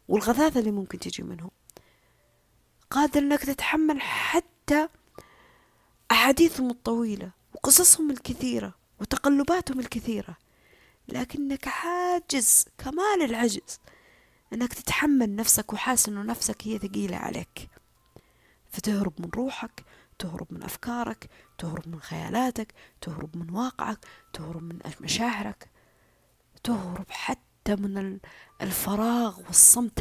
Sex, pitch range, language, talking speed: female, 180-255 Hz, Arabic, 95 wpm